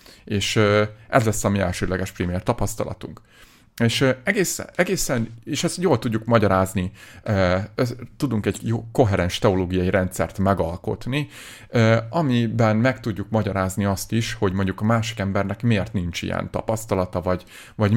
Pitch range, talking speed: 100-125 Hz, 130 wpm